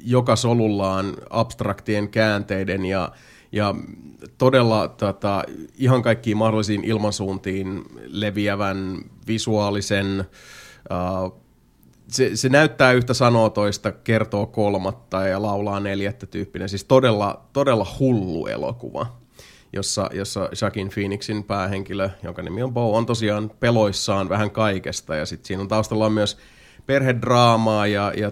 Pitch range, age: 100-115 Hz, 30-49